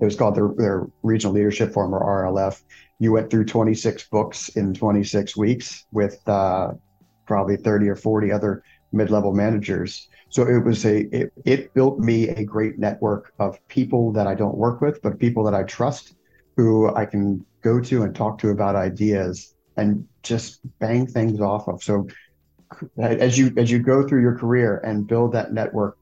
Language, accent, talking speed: English, American, 185 wpm